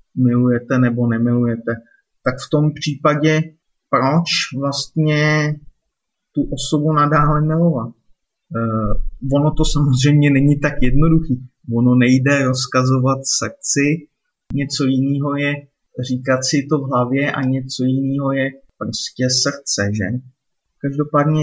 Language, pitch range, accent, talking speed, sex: Czech, 125-145 Hz, native, 110 wpm, male